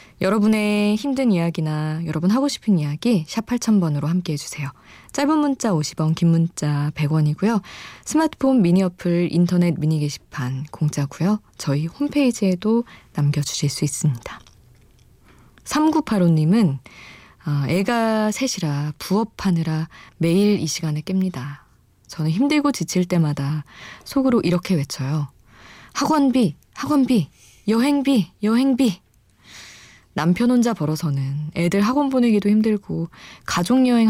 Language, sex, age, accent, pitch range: Korean, female, 20-39, native, 150-210 Hz